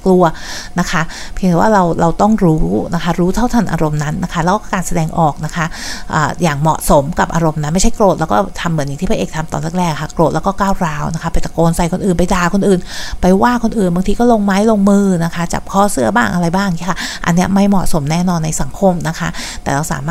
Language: Thai